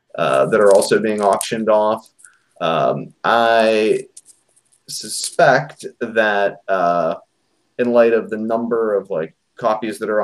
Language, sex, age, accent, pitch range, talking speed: English, male, 30-49, American, 100-125 Hz, 130 wpm